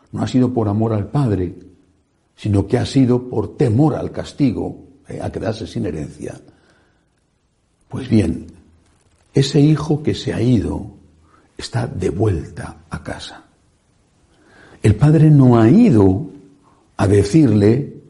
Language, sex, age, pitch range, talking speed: Spanish, male, 60-79, 100-150 Hz, 135 wpm